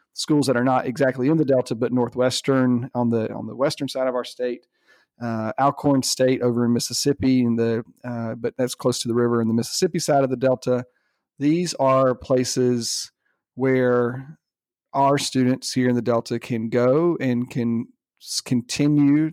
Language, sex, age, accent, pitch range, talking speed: English, male, 40-59, American, 120-135 Hz, 175 wpm